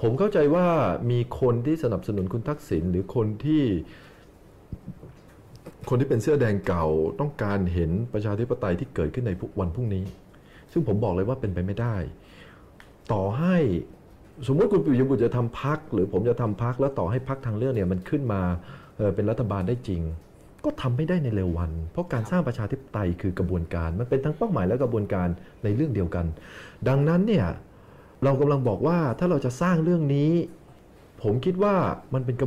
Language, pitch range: Thai, 95-145 Hz